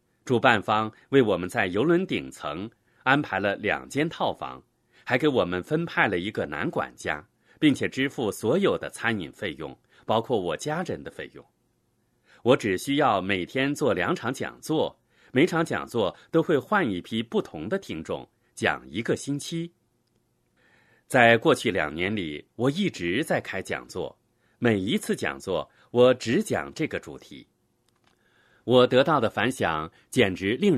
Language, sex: Chinese, male